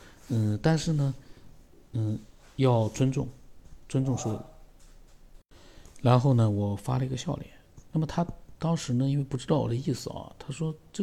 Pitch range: 110-140 Hz